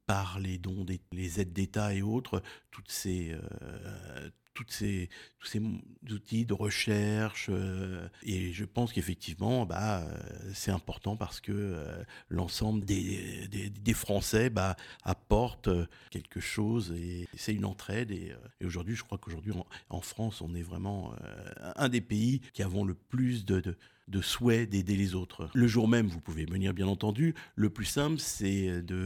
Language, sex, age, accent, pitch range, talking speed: French, male, 50-69, French, 90-105 Hz, 170 wpm